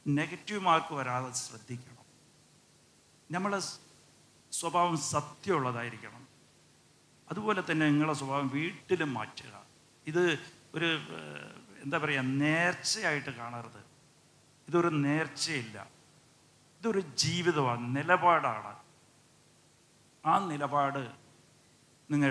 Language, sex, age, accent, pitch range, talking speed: English, male, 60-79, Indian, 125-160 Hz, 75 wpm